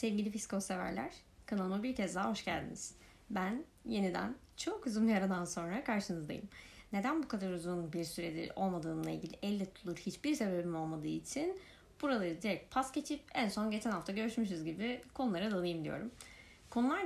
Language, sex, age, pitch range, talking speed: Turkish, female, 20-39, 190-255 Hz, 155 wpm